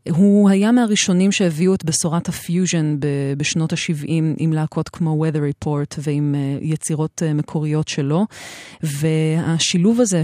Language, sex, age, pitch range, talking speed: Hebrew, female, 30-49, 155-185 Hz, 115 wpm